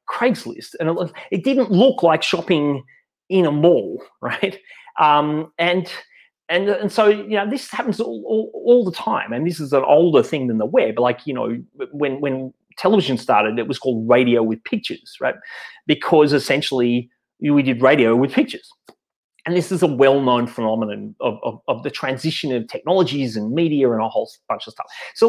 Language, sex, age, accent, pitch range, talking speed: English, male, 30-49, Australian, 135-230 Hz, 185 wpm